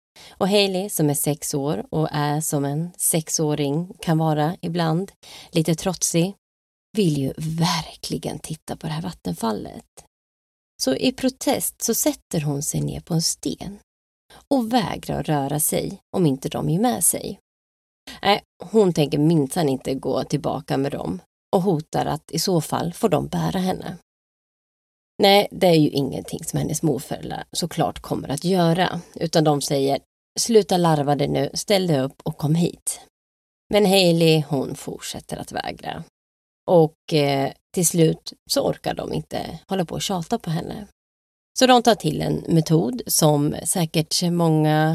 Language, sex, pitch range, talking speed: Swedish, female, 145-180 Hz, 160 wpm